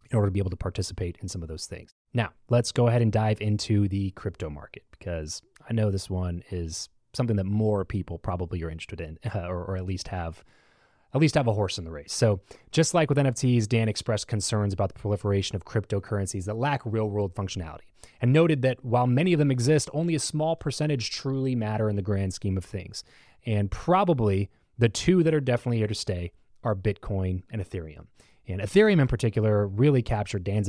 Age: 30-49